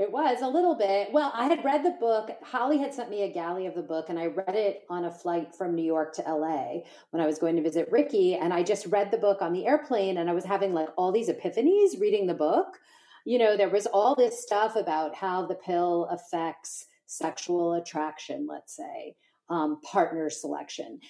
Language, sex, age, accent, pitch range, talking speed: English, female, 30-49, American, 170-255 Hz, 220 wpm